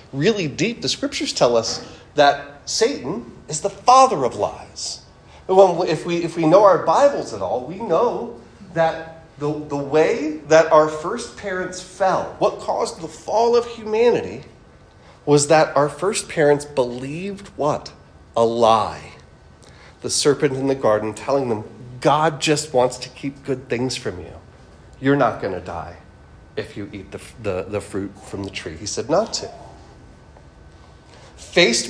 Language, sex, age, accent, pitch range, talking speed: English, male, 40-59, American, 125-185 Hz, 160 wpm